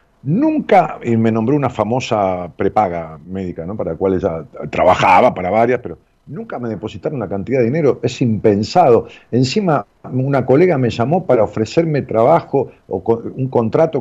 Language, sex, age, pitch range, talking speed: Spanish, male, 50-69, 100-160 Hz, 160 wpm